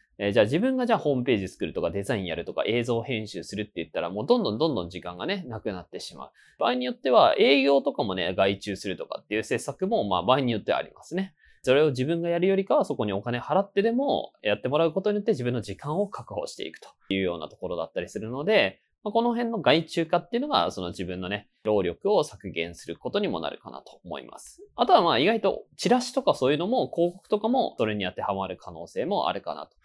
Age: 20-39